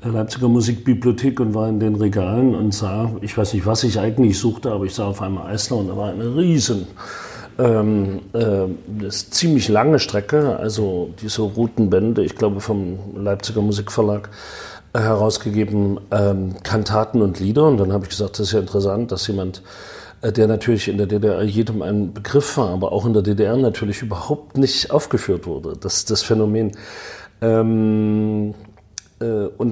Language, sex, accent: German, male, German